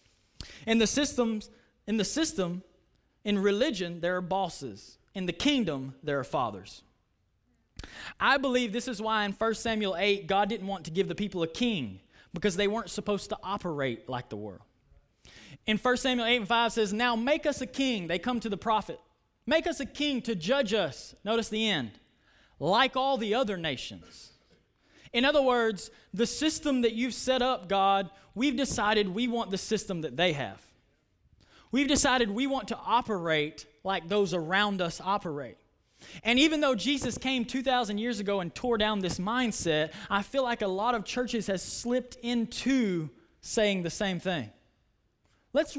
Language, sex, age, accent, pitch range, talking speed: English, male, 20-39, American, 185-250 Hz, 175 wpm